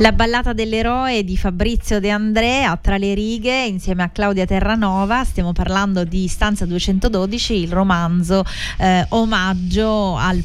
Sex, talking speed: female, 145 wpm